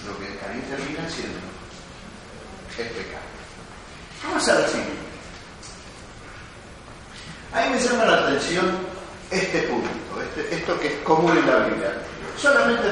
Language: Spanish